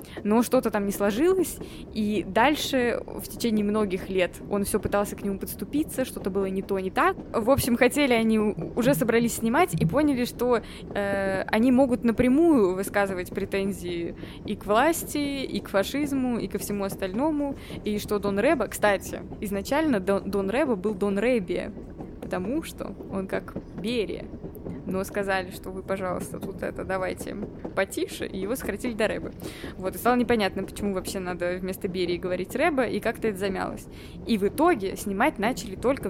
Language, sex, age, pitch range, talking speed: Russian, female, 20-39, 195-250 Hz, 165 wpm